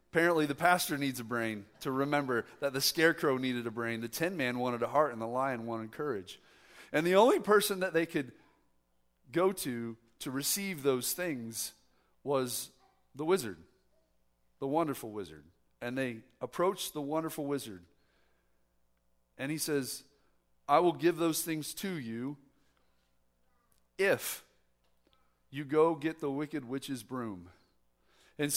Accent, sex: American, male